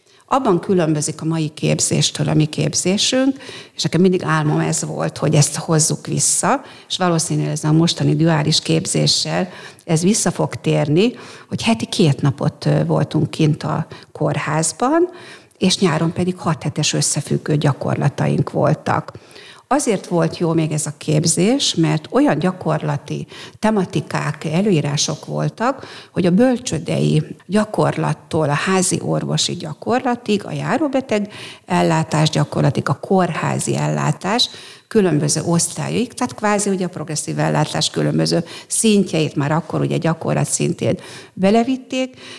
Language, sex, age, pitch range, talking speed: Hungarian, female, 50-69, 150-195 Hz, 125 wpm